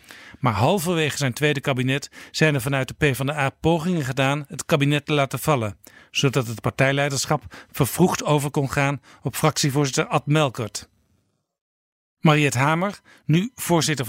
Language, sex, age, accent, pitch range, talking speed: Dutch, male, 50-69, Dutch, 130-155 Hz, 135 wpm